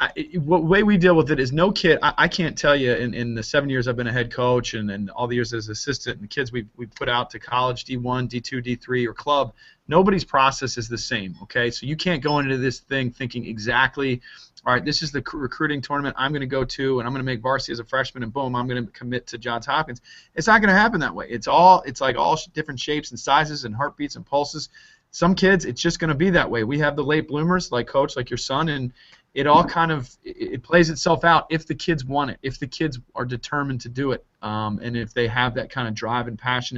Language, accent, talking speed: English, American, 265 wpm